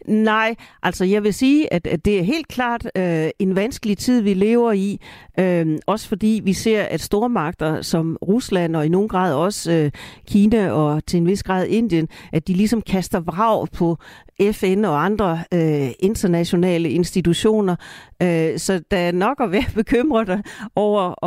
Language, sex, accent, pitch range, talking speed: Danish, female, native, 170-215 Hz, 175 wpm